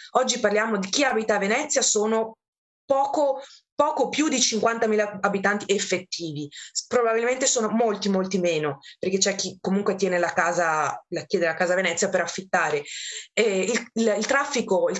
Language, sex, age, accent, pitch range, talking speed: Italian, female, 20-39, native, 190-255 Hz, 160 wpm